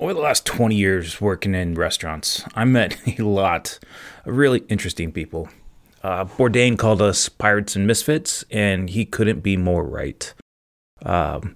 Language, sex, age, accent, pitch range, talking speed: English, male, 30-49, American, 90-110 Hz, 155 wpm